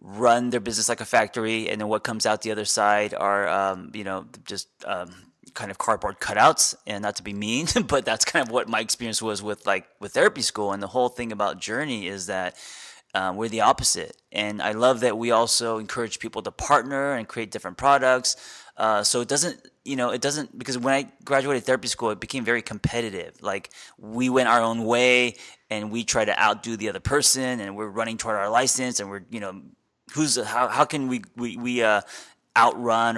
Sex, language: male, English